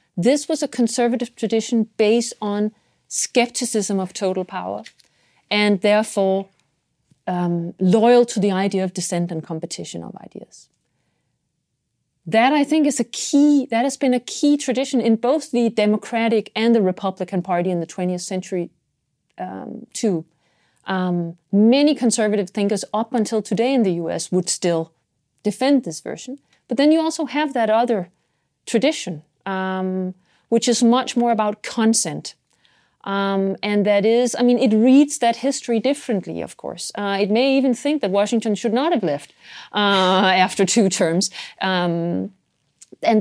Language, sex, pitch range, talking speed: Danish, female, 190-250 Hz, 155 wpm